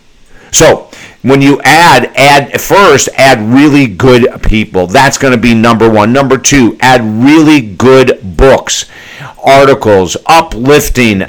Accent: American